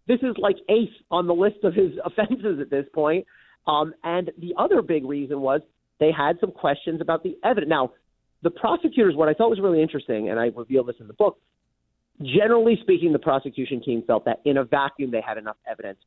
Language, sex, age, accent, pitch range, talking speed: English, male, 40-59, American, 130-185 Hz, 215 wpm